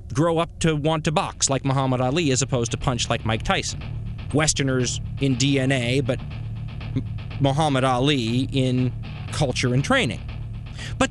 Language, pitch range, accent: English, 120-180 Hz, American